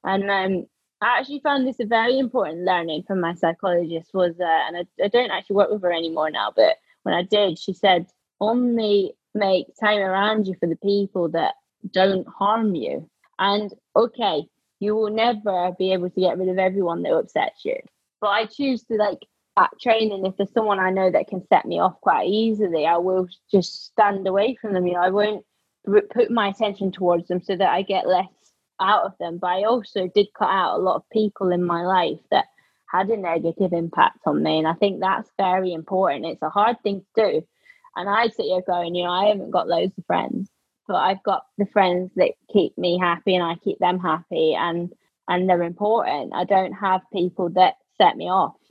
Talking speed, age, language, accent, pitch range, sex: 215 wpm, 20-39, English, British, 180-210 Hz, female